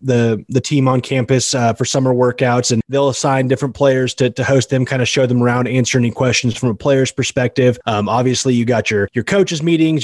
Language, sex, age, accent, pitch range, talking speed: English, male, 30-49, American, 120-135 Hz, 225 wpm